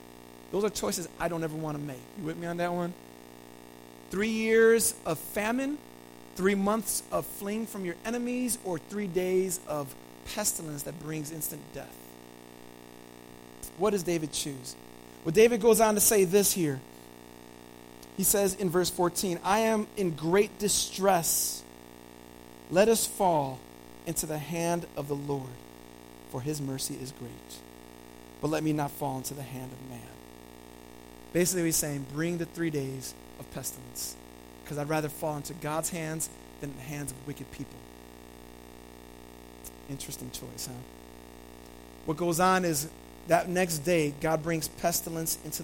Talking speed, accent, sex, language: 155 wpm, American, male, English